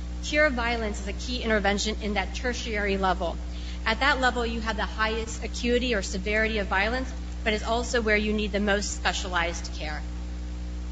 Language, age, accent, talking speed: English, 40-59, American, 175 wpm